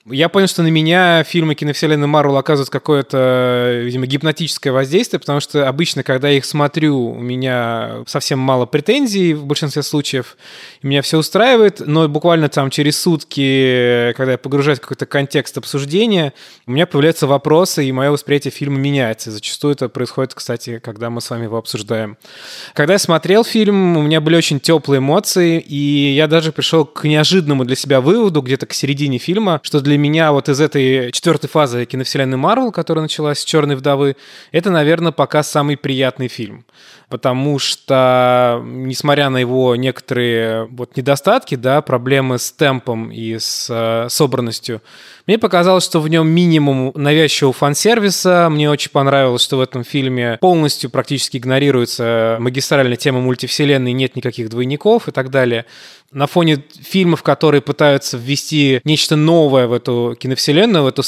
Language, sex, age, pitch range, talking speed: Russian, male, 20-39, 130-155 Hz, 160 wpm